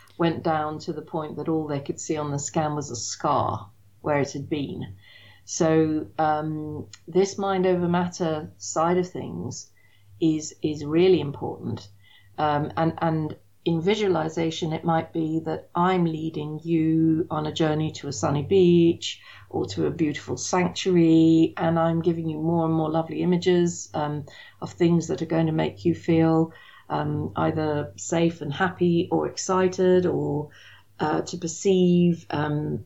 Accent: British